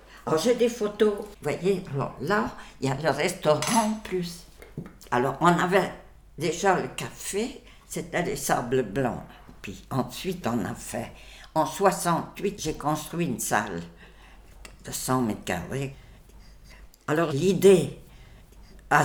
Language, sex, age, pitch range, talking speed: French, female, 60-79, 130-175 Hz, 130 wpm